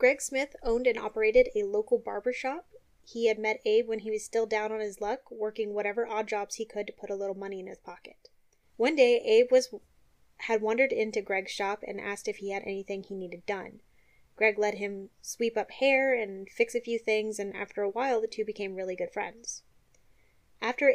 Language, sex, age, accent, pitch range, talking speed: English, female, 20-39, American, 200-230 Hz, 210 wpm